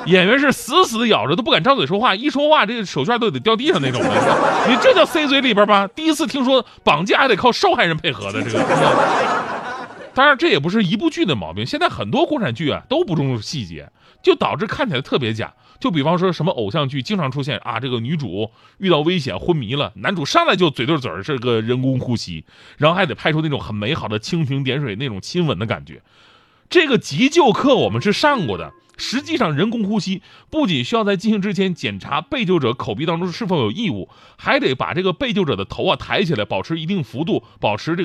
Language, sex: Chinese, male